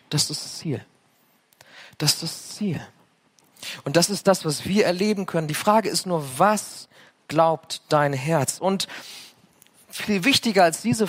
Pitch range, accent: 145-190 Hz, German